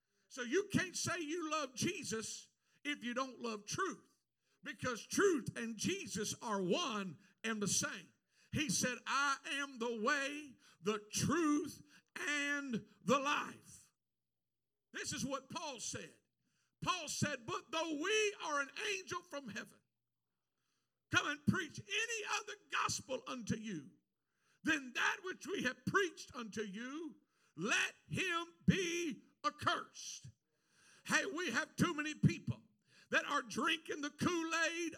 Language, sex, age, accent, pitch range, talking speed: English, male, 50-69, American, 235-335 Hz, 135 wpm